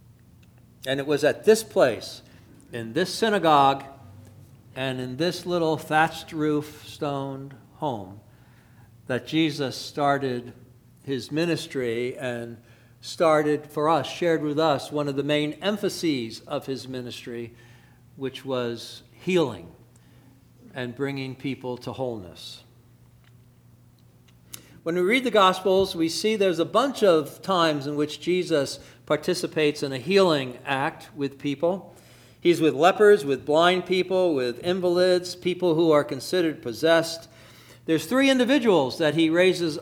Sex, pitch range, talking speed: male, 120-165 Hz, 130 wpm